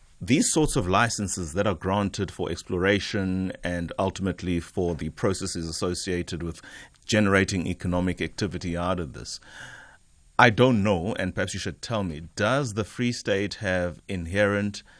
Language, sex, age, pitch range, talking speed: English, male, 30-49, 85-105 Hz, 150 wpm